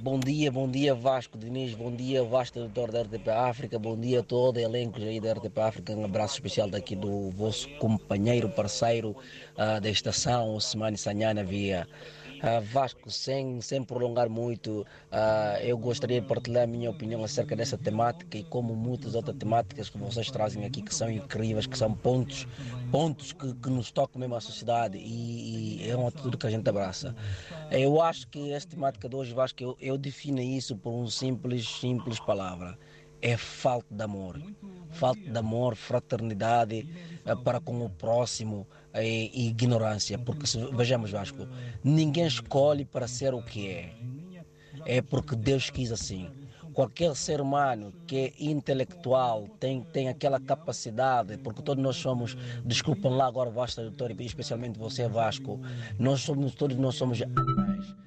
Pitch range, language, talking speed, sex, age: 110-135 Hz, Portuguese, 165 wpm, male, 20-39